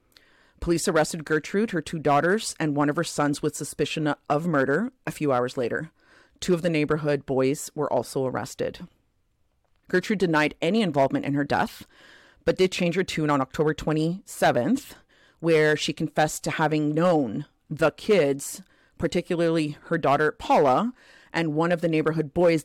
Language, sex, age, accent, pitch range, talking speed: English, female, 40-59, American, 145-175 Hz, 160 wpm